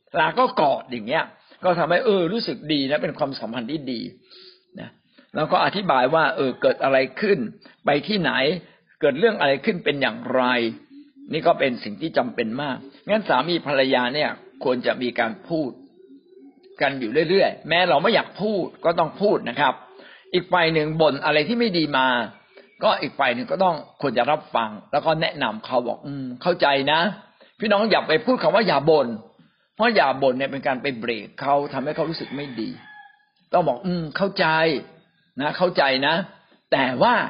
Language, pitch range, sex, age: Thai, 135-215 Hz, male, 60-79